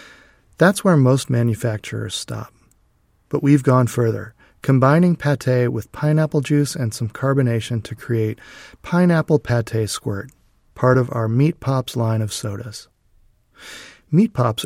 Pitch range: 115-135 Hz